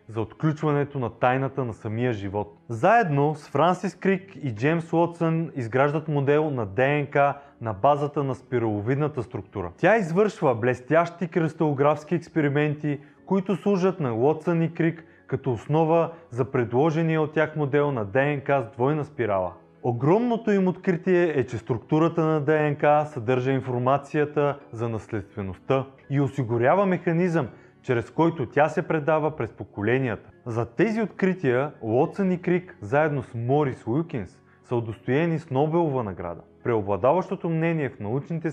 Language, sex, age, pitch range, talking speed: Bulgarian, male, 30-49, 120-160 Hz, 135 wpm